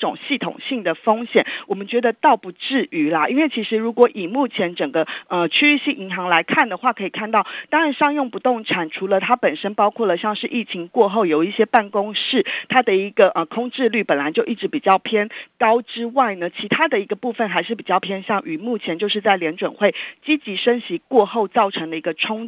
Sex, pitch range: female, 185-250 Hz